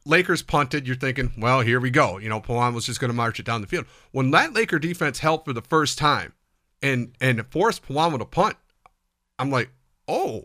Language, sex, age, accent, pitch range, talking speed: English, male, 40-59, American, 120-145 Hz, 220 wpm